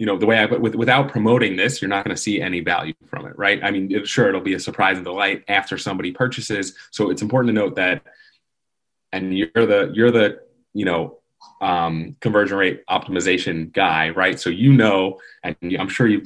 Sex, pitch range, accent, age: male, 90-120 Hz, American, 30-49